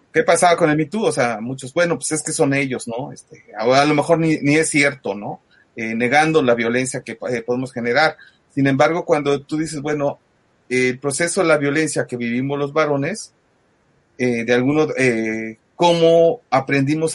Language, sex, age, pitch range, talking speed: Spanish, male, 40-59, 125-155 Hz, 195 wpm